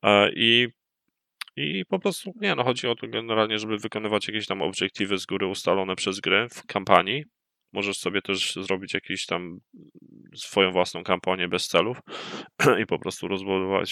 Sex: male